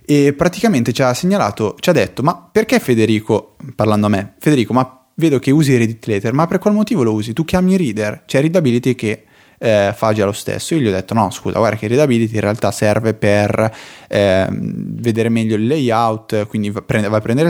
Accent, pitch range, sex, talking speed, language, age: native, 105-140 Hz, male, 215 wpm, Italian, 20-39